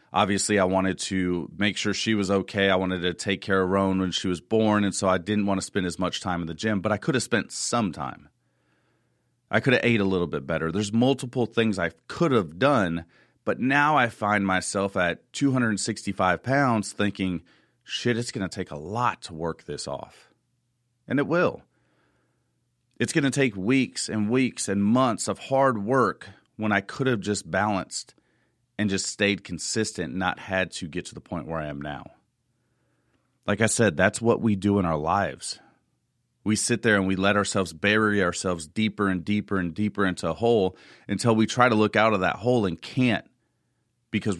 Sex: male